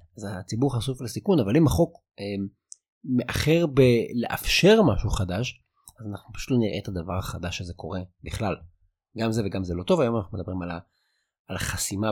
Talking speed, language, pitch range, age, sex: 170 wpm, Hebrew, 100-140 Hz, 30-49, male